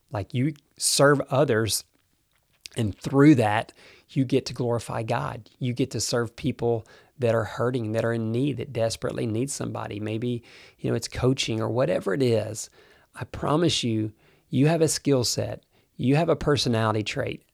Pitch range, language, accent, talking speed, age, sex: 110-145 Hz, English, American, 170 wpm, 40-59, male